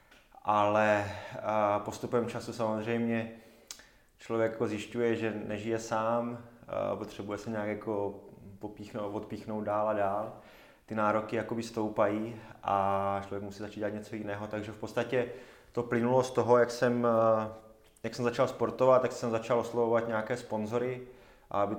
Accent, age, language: native, 20-39, Czech